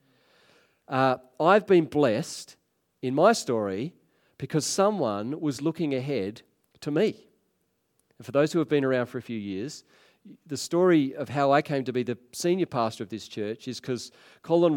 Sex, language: male, English